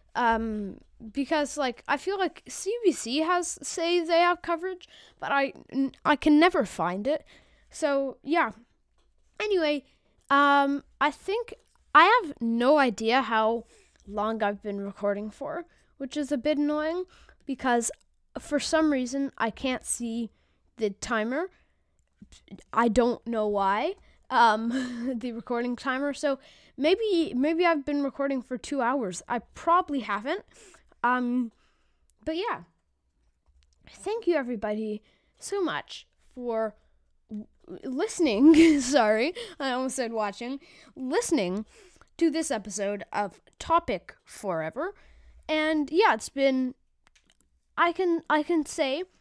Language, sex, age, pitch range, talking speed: English, female, 10-29, 230-320 Hz, 120 wpm